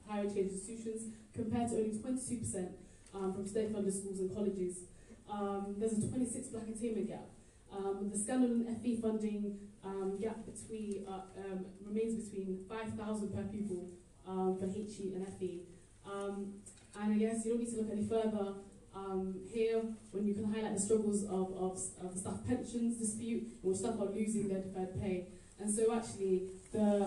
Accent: British